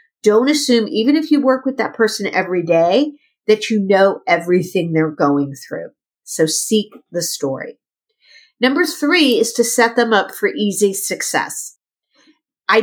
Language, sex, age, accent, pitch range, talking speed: English, female, 50-69, American, 165-240 Hz, 155 wpm